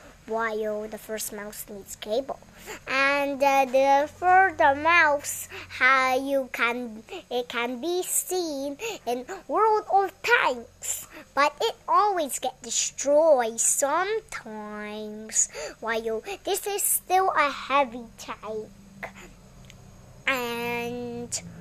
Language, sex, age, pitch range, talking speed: Indonesian, male, 20-39, 240-335 Hz, 105 wpm